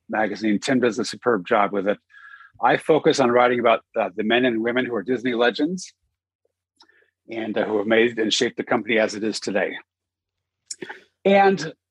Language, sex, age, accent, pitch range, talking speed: English, male, 40-59, American, 95-135 Hz, 180 wpm